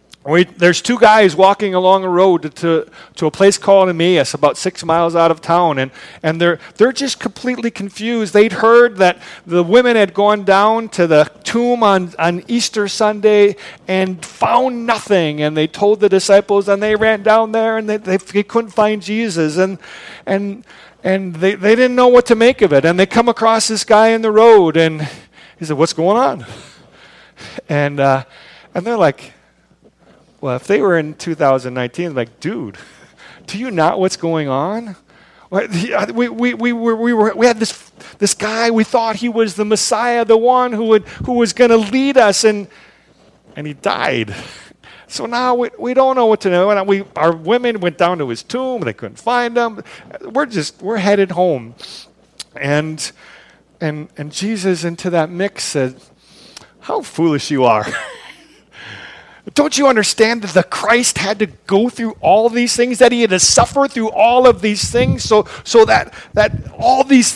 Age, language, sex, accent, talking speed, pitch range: 40-59, English, male, American, 185 wpm, 175-230 Hz